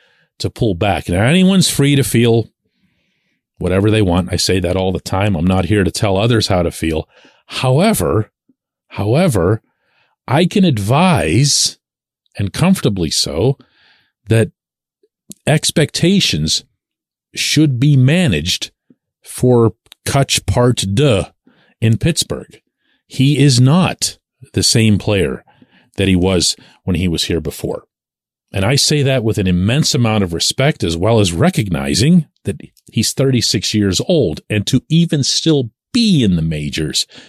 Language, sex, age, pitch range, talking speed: English, male, 40-59, 95-140 Hz, 140 wpm